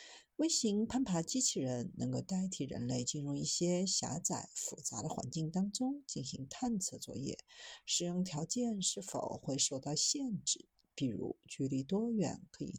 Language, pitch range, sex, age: Chinese, 145-240 Hz, female, 50-69